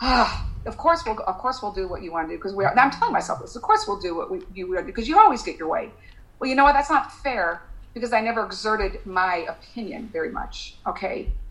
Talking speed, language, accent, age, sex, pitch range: 270 wpm, English, American, 50-69, female, 180-230 Hz